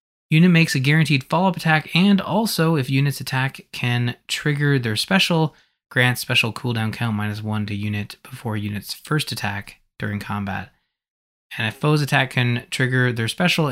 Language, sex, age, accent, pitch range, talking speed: English, male, 20-39, American, 110-140 Hz, 160 wpm